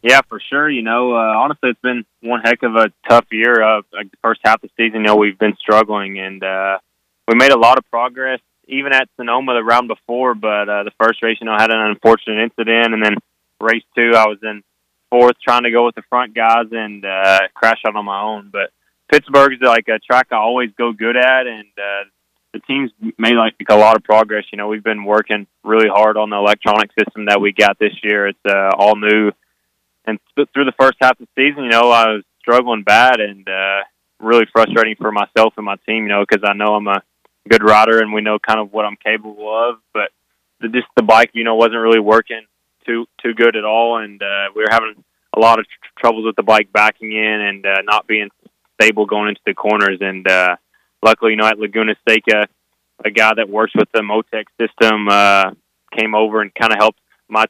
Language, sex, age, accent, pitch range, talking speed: English, male, 20-39, American, 105-115 Hz, 235 wpm